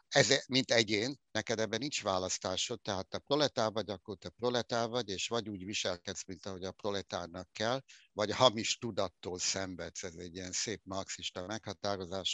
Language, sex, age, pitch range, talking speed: Hungarian, male, 60-79, 95-110 Hz, 165 wpm